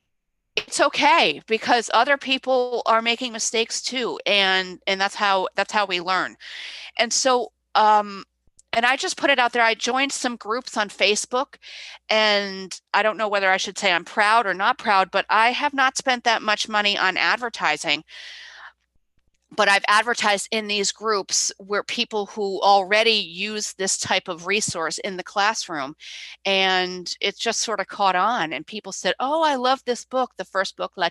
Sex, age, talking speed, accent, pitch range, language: female, 40-59, 180 wpm, American, 190-230 Hz, English